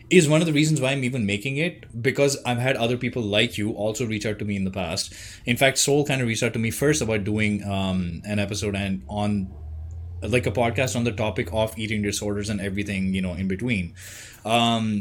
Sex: male